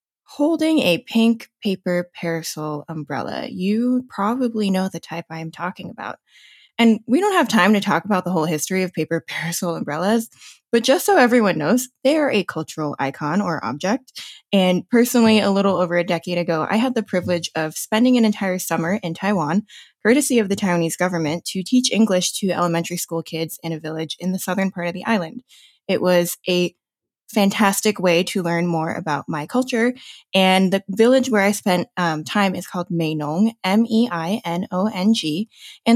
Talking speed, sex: 180 wpm, female